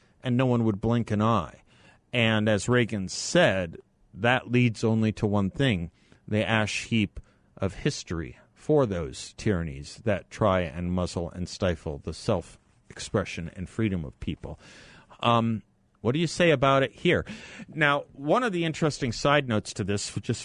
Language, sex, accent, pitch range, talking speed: English, male, American, 100-125 Hz, 160 wpm